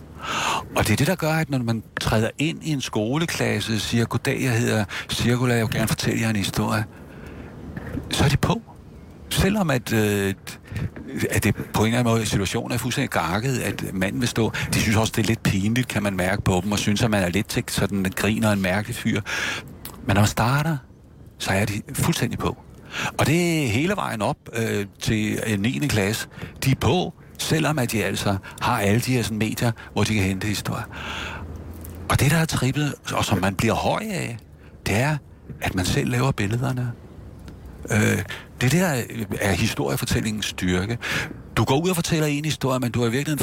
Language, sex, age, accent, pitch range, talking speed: Danish, male, 60-79, native, 100-130 Hz, 205 wpm